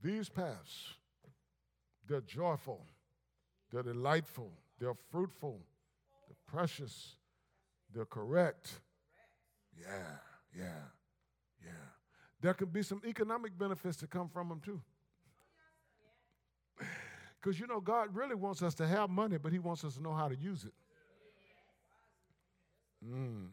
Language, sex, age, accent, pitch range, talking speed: English, male, 50-69, American, 145-230 Hz, 120 wpm